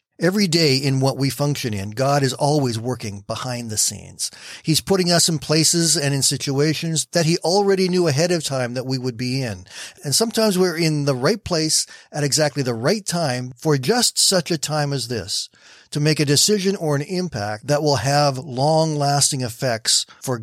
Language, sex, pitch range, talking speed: English, male, 120-160 Hz, 195 wpm